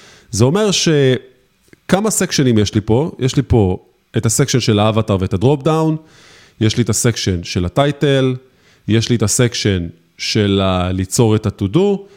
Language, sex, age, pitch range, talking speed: Hebrew, male, 20-39, 110-150 Hz, 160 wpm